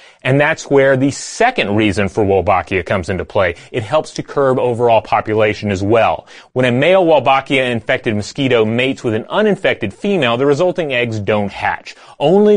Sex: male